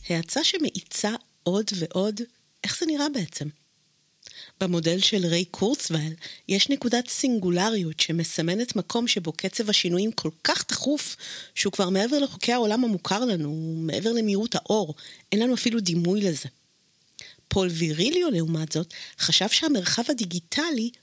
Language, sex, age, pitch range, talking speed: Hebrew, female, 30-49, 170-230 Hz, 130 wpm